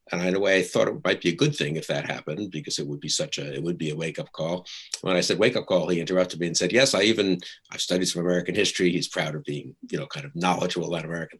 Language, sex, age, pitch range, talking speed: English, male, 50-69, 80-95 Hz, 295 wpm